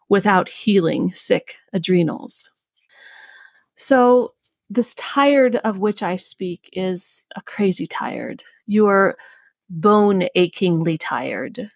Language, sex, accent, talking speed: English, female, American, 95 wpm